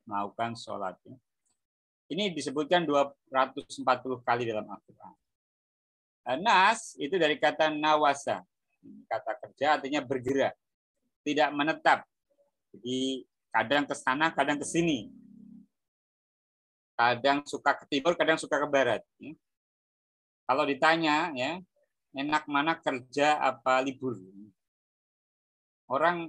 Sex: male